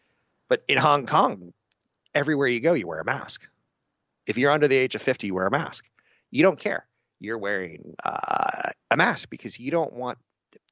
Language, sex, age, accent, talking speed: English, male, 30-49, American, 190 wpm